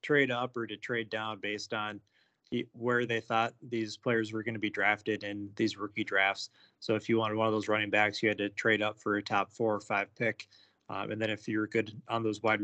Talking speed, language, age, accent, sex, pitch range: 245 wpm, English, 20-39, American, male, 110-125 Hz